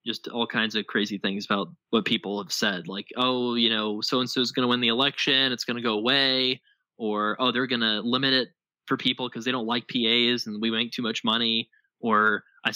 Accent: American